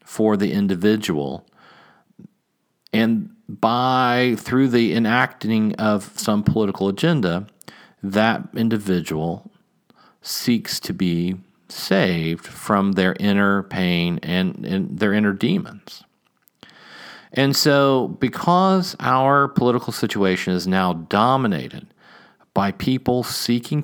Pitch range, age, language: 100-135 Hz, 40-59, English